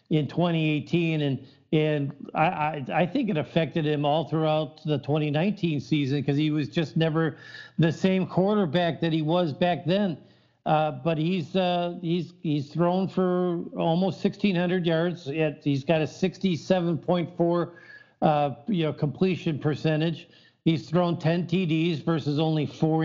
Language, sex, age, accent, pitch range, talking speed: English, male, 50-69, American, 150-180 Hz, 150 wpm